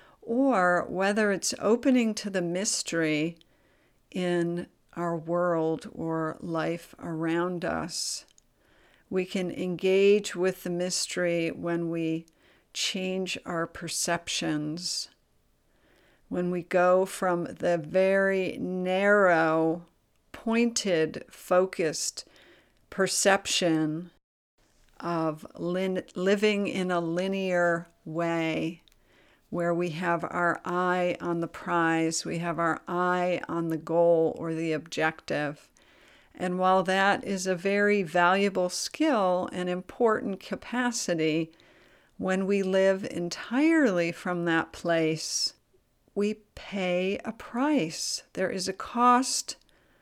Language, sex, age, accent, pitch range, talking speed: English, female, 50-69, American, 170-190 Hz, 100 wpm